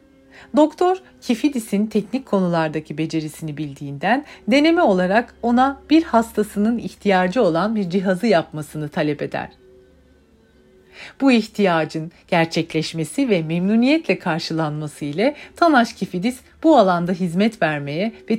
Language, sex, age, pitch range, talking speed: Turkish, female, 40-59, 160-240 Hz, 105 wpm